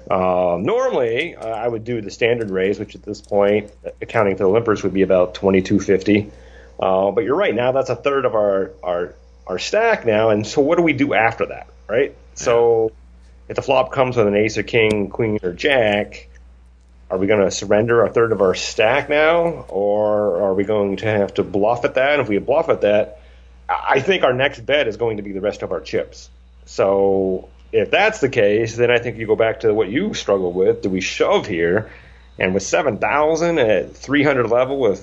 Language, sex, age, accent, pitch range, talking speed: English, male, 30-49, American, 90-115 Hz, 215 wpm